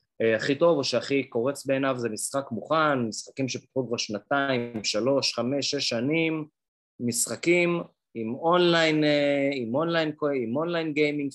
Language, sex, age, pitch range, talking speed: Hebrew, male, 30-49, 120-155 Hz, 120 wpm